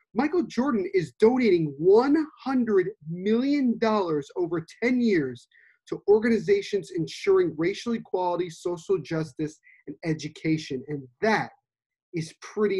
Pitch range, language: 150-185 Hz, English